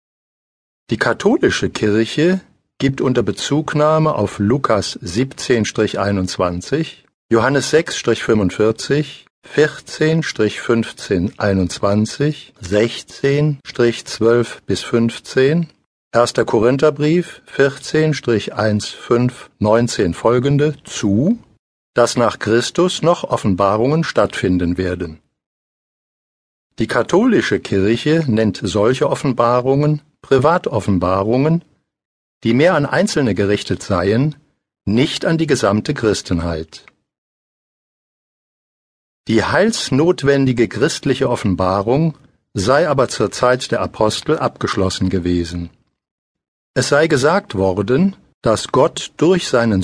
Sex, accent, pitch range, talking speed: male, German, 100-150 Hz, 80 wpm